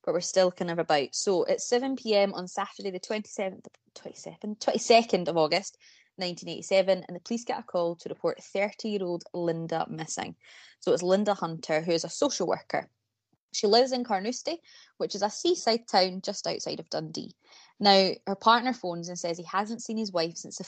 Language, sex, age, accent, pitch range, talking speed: English, female, 20-39, British, 165-215 Hz, 185 wpm